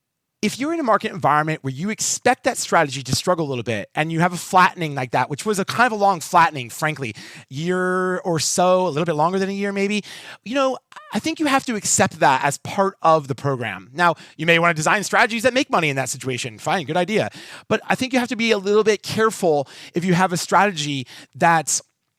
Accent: American